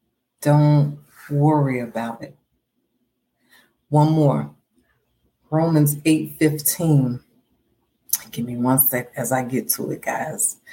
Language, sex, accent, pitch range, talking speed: English, female, American, 135-155 Hz, 100 wpm